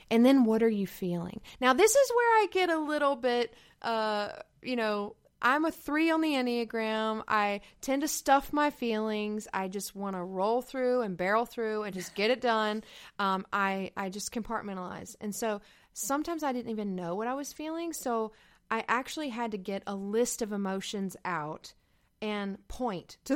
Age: 20-39